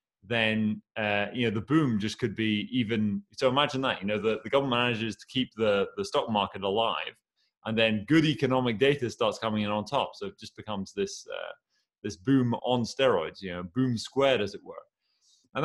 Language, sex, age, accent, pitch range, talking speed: English, male, 30-49, British, 105-130 Hz, 205 wpm